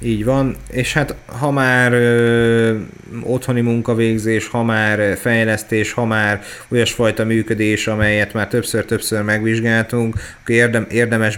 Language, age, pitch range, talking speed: Hungarian, 30-49, 105-115 Hz, 105 wpm